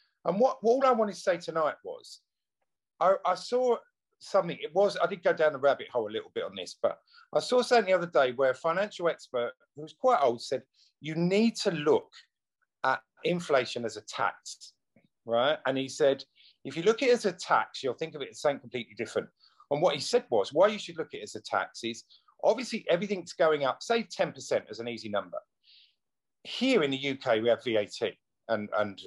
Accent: British